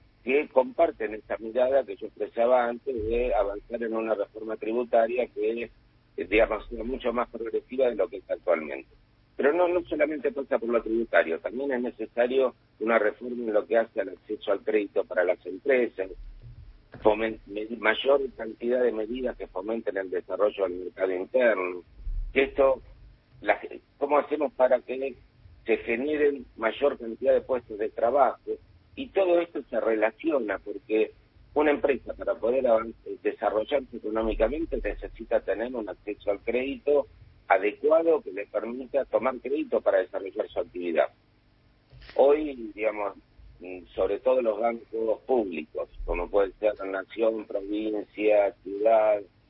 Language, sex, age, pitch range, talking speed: Spanish, male, 50-69, 110-150 Hz, 140 wpm